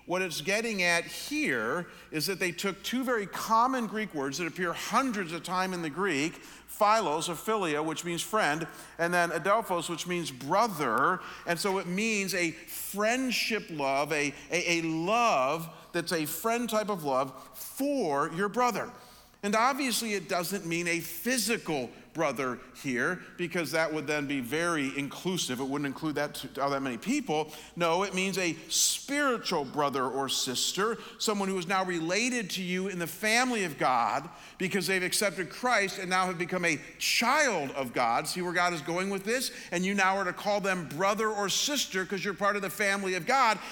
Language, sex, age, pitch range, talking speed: English, male, 40-59, 165-220 Hz, 185 wpm